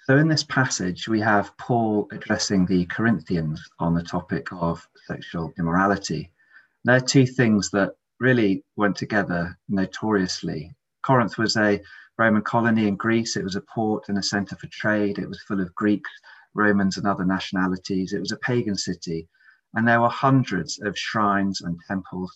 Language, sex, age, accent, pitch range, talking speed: English, male, 30-49, British, 90-115 Hz, 170 wpm